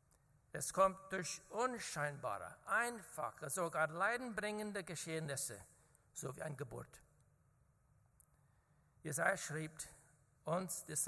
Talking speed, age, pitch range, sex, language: 85 wpm, 60-79, 140-195 Hz, male, German